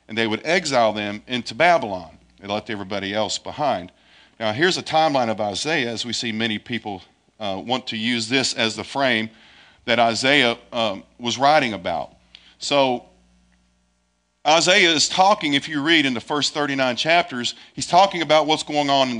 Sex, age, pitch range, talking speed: male, 50-69, 110-155 Hz, 175 wpm